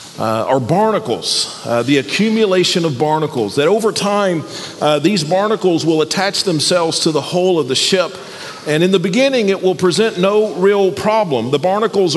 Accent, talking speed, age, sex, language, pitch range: American, 175 wpm, 40-59, male, English, 170-210 Hz